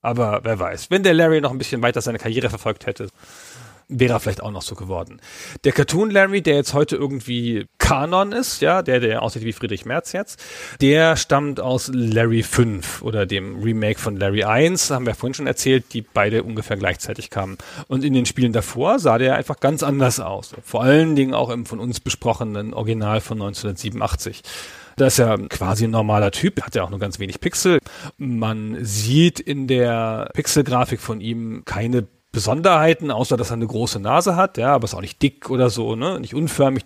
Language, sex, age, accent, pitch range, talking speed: German, male, 40-59, German, 110-140 Hz, 195 wpm